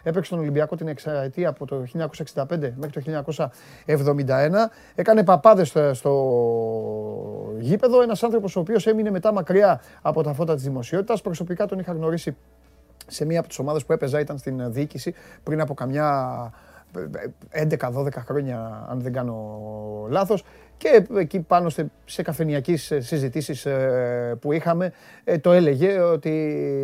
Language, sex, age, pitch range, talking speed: Greek, male, 30-49, 135-175 Hz, 135 wpm